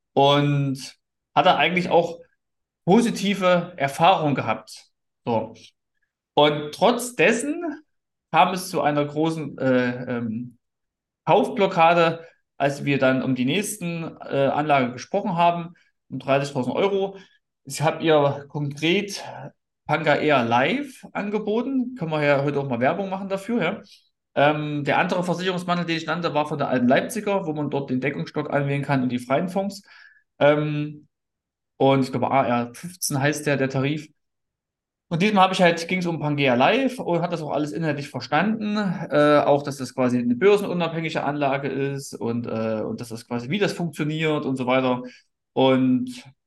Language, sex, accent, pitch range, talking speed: German, male, German, 135-180 Hz, 160 wpm